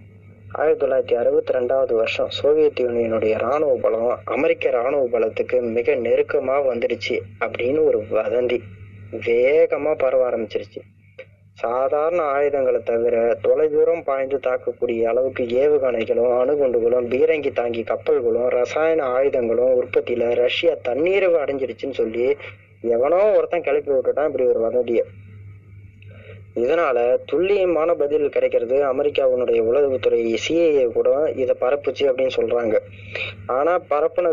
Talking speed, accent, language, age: 105 wpm, native, Tamil, 20-39